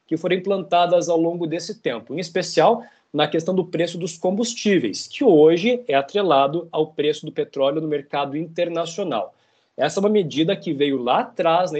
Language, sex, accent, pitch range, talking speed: Portuguese, male, Brazilian, 150-185 Hz, 180 wpm